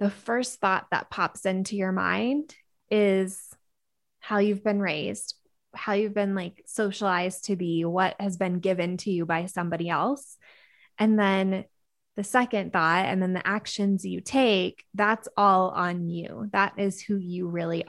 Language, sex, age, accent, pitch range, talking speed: English, female, 20-39, American, 180-215 Hz, 165 wpm